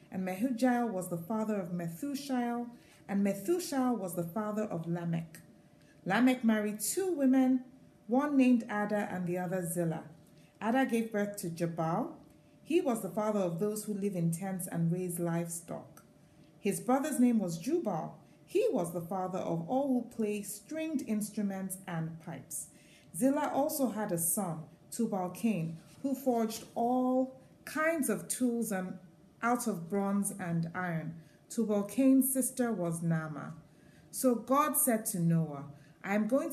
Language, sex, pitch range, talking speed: English, female, 175-250 Hz, 150 wpm